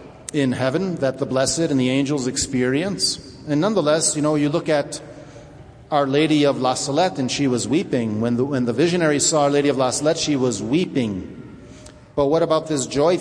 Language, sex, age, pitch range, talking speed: English, male, 50-69, 135-160 Hz, 200 wpm